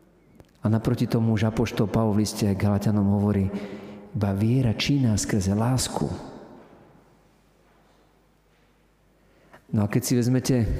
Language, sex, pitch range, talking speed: Slovak, male, 100-120 Hz, 110 wpm